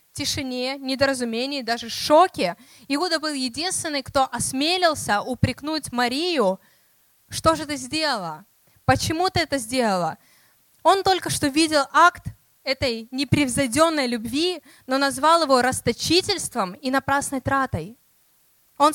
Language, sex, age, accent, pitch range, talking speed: Russian, female, 20-39, native, 260-330 Hz, 110 wpm